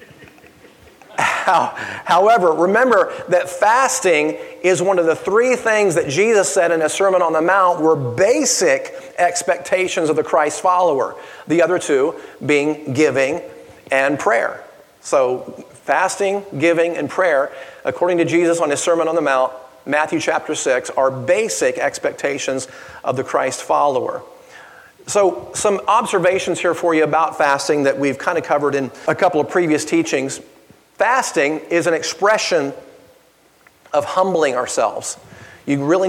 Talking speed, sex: 140 wpm, male